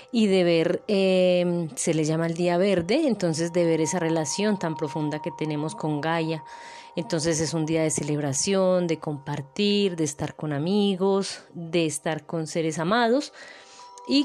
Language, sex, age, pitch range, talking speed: Spanish, female, 20-39, 155-210 Hz, 165 wpm